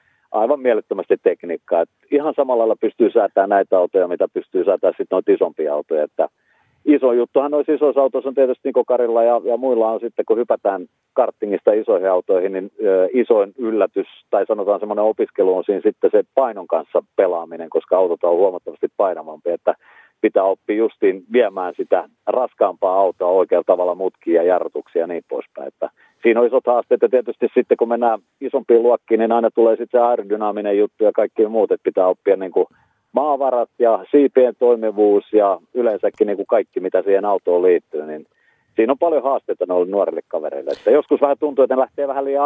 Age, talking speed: 40-59, 180 wpm